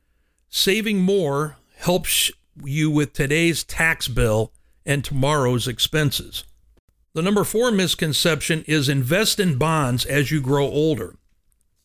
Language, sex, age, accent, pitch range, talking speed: English, male, 60-79, American, 125-170 Hz, 115 wpm